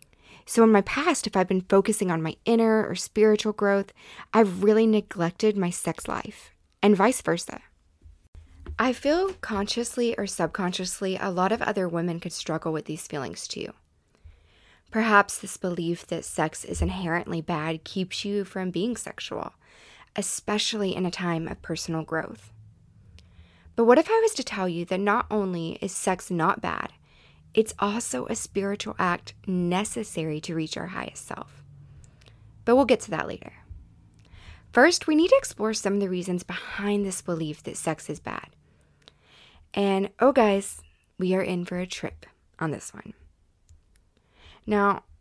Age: 20-39